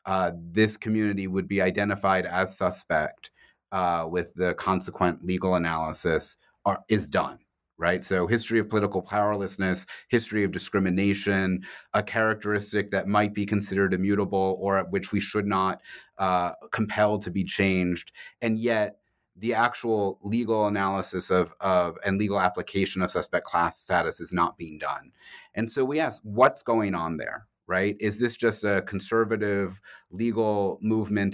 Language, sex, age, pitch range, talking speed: English, male, 30-49, 95-110 Hz, 150 wpm